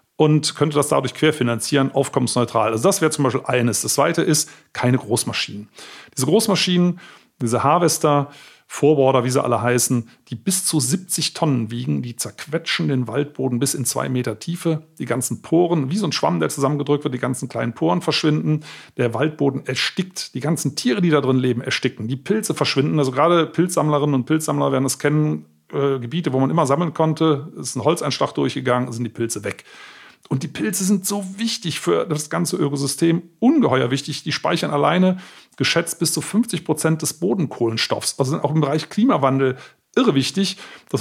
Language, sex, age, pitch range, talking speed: German, male, 40-59, 130-170 Hz, 180 wpm